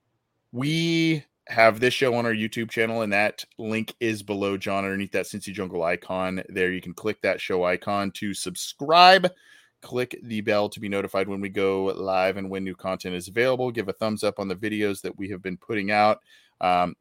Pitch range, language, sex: 95-115 Hz, English, male